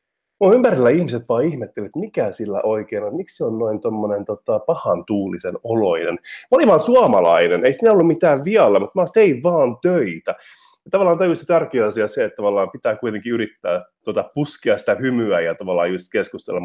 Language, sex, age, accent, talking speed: Finnish, male, 30-49, native, 185 wpm